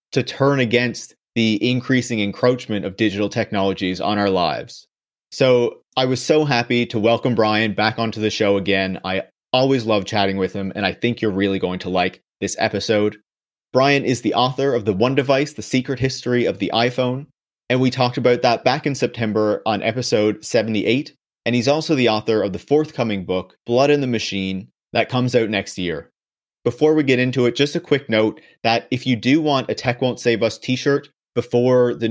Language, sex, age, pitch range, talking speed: English, male, 30-49, 110-130 Hz, 200 wpm